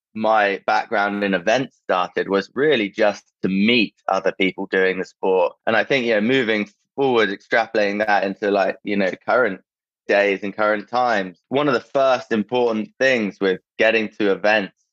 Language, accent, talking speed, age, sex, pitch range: English, British, 175 wpm, 20-39, male, 95-110 Hz